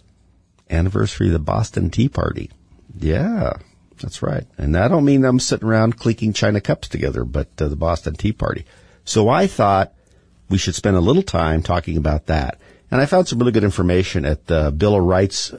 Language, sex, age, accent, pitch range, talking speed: English, male, 50-69, American, 80-105 Hz, 195 wpm